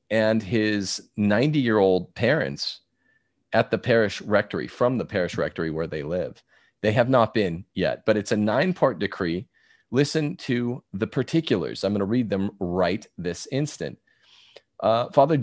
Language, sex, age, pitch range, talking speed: English, male, 40-59, 100-140 Hz, 160 wpm